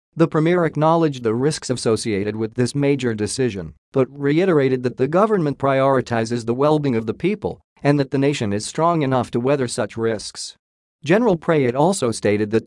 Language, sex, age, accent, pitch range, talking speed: English, male, 40-59, American, 115-145 Hz, 175 wpm